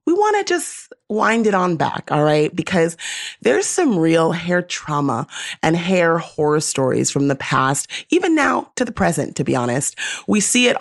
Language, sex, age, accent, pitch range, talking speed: English, female, 30-49, American, 150-185 Hz, 190 wpm